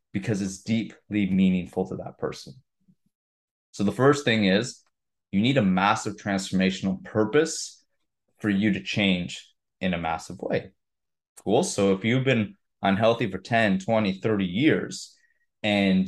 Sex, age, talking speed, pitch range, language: male, 20-39, 140 wpm, 95-110 Hz, English